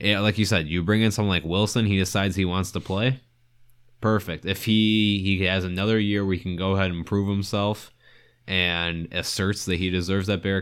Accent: American